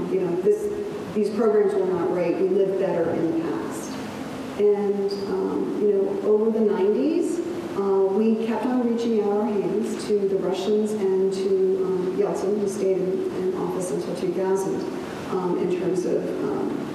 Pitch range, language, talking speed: 180-235 Hz, English, 160 wpm